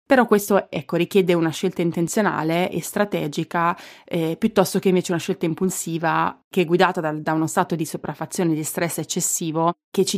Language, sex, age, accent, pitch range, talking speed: Italian, female, 20-39, native, 165-205 Hz, 175 wpm